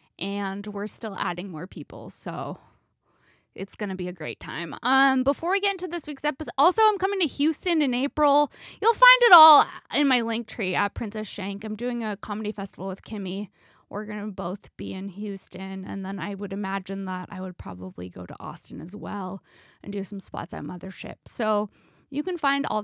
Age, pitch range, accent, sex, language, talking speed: 20-39, 205-275 Hz, American, female, English, 200 wpm